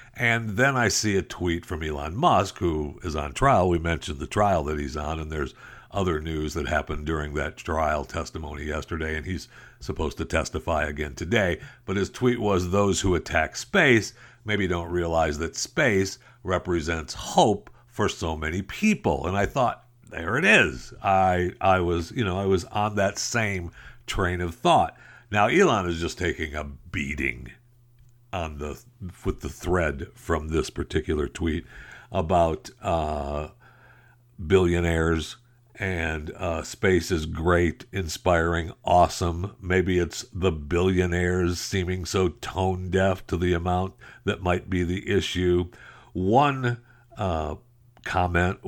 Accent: American